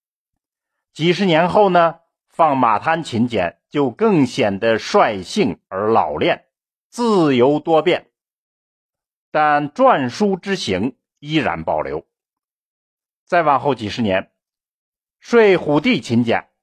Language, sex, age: Chinese, male, 50-69